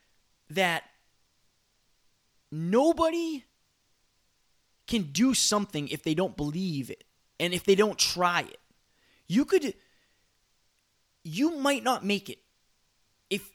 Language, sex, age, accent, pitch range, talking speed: English, male, 20-39, American, 190-260 Hz, 105 wpm